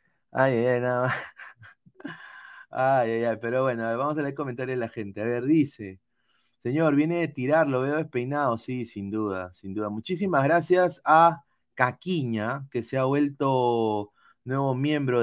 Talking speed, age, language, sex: 160 wpm, 30-49, Spanish, male